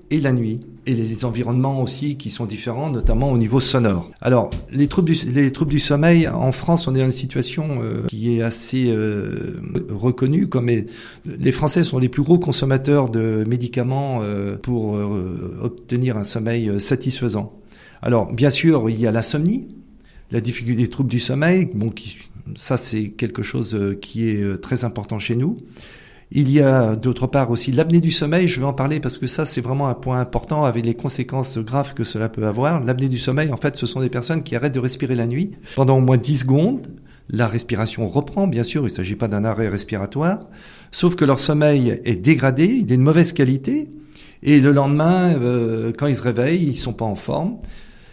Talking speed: 210 wpm